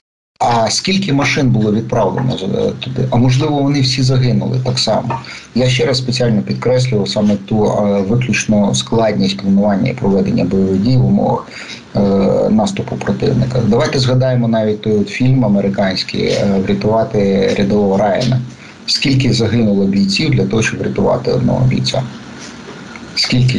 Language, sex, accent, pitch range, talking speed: Ukrainian, male, native, 100-125 Hz, 125 wpm